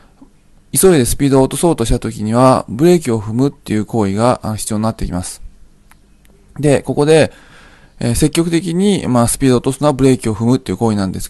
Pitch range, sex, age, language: 105-140 Hz, male, 20-39, Japanese